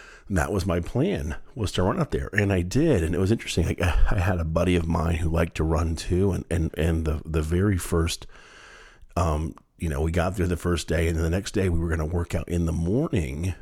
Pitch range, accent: 80-100 Hz, American